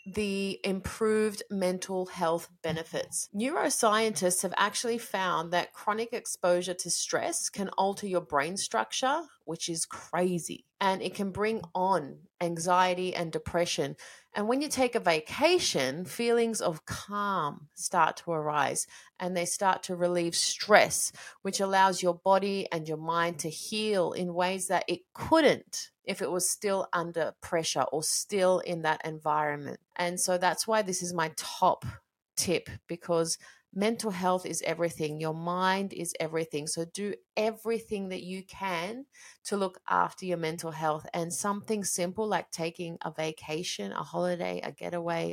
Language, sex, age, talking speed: English, female, 30-49, 150 wpm